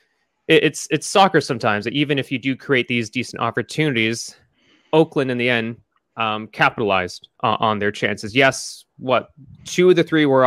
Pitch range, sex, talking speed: 115-145 Hz, male, 170 wpm